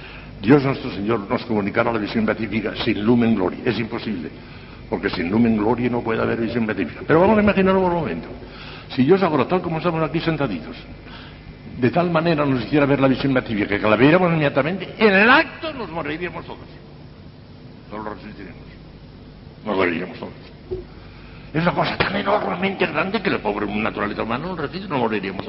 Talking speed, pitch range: 180 wpm, 125-185 Hz